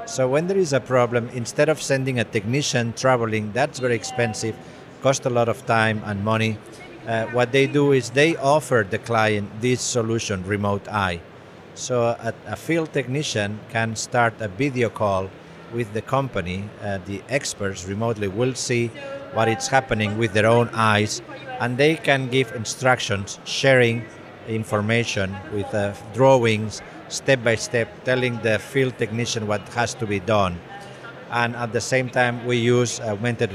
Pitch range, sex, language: 110-130 Hz, male, English